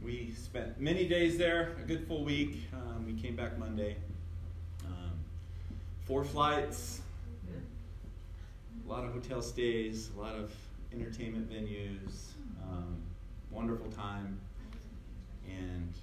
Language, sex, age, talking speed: English, male, 30-49, 115 wpm